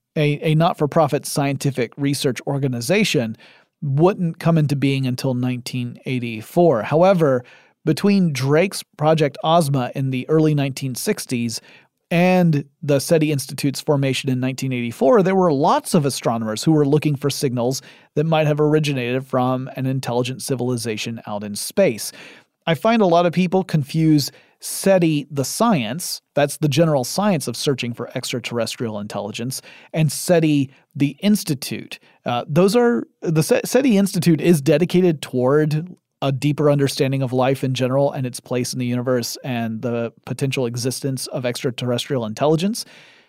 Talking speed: 135 wpm